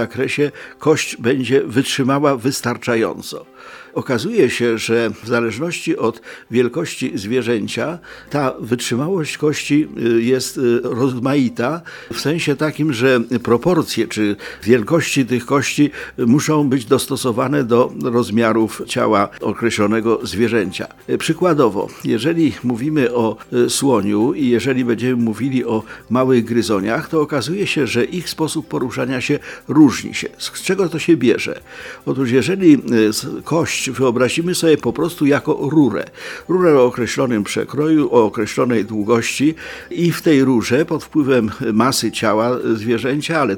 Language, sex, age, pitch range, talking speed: Polish, male, 50-69, 120-150 Hz, 125 wpm